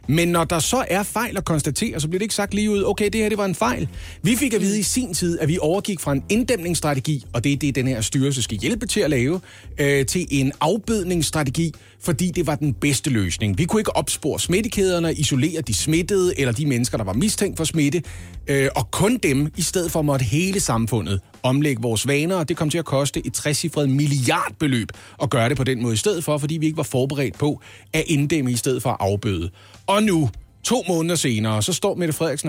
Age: 30-49